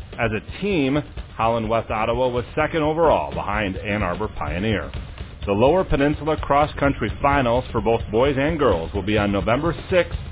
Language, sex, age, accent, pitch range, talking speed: English, male, 40-59, American, 100-140 Hz, 165 wpm